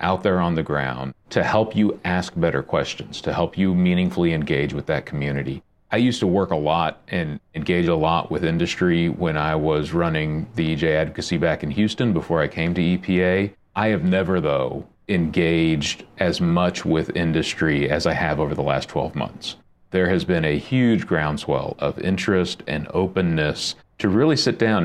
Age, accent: 40-59, American